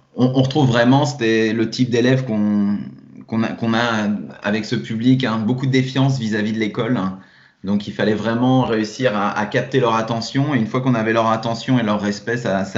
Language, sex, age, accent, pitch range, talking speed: French, male, 30-49, French, 105-125 Hz, 200 wpm